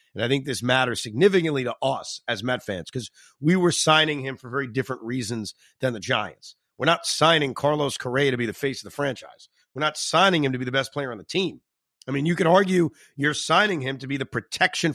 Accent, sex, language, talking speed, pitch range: American, male, English, 235 wpm, 125-155 Hz